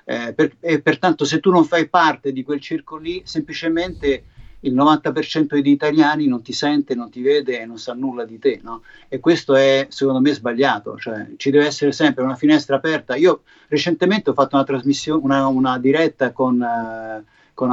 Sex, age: male, 50-69